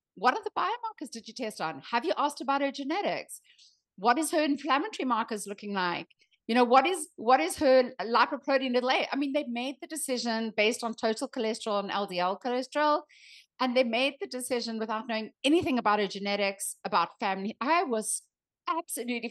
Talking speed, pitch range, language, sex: 185 wpm, 215-280 Hz, English, female